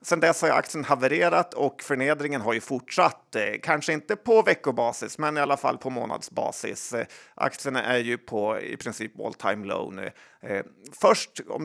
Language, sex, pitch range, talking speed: Swedish, male, 125-160 Hz, 160 wpm